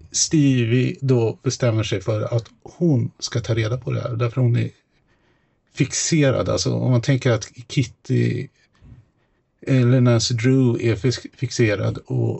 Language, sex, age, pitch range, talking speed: Swedish, male, 50-69, 120-145 Hz, 145 wpm